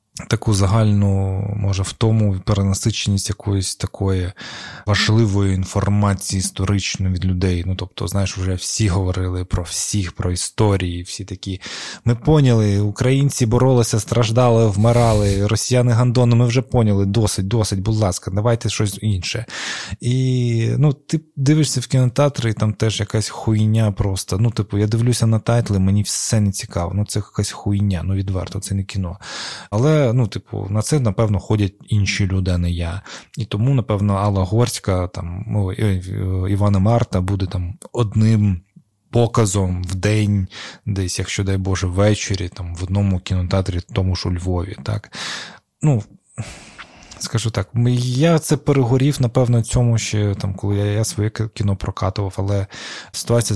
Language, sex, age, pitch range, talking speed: Ukrainian, male, 20-39, 95-115 Hz, 145 wpm